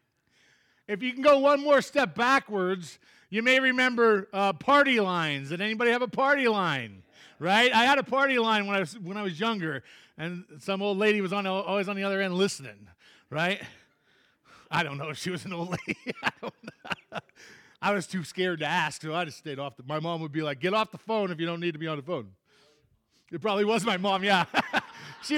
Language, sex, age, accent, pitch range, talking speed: English, male, 40-59, American, 160-230 Hz, 225 wpm